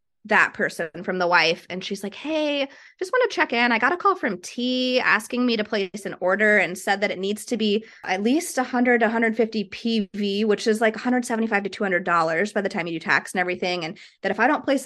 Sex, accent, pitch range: female, American, 185-245 Hz